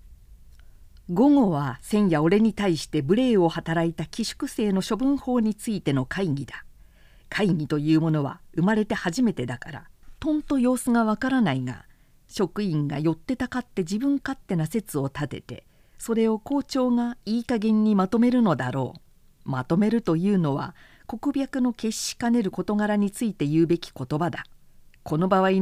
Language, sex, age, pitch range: Japanese, female, 50-69, 150-235 Hz